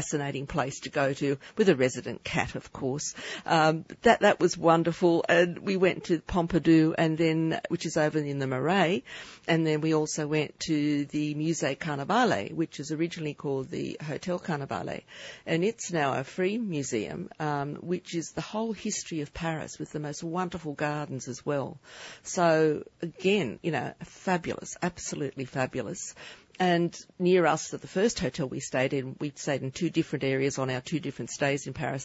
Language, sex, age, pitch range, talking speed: English, female, 50-69, 140-170 Hz, 180 wpm